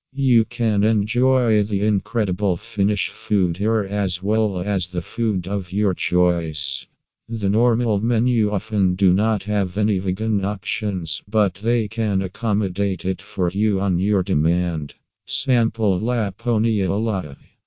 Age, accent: 50-69, American